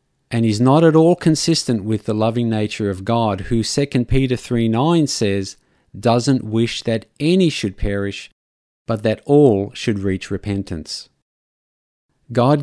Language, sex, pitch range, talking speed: English, male, 100-130 Hz, 145 wpm